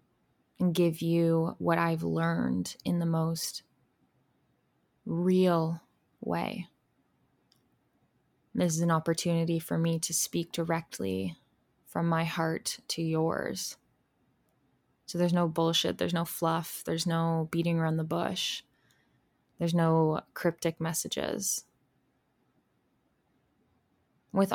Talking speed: 105 wpm